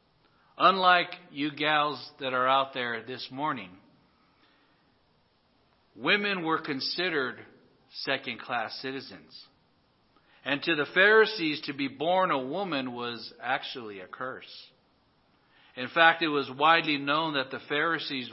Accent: American